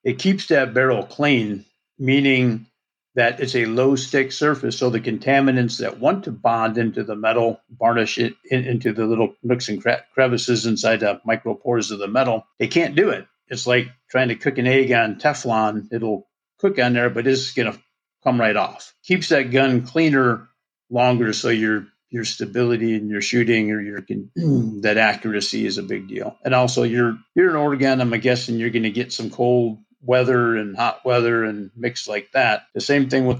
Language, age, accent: English, 50-69, American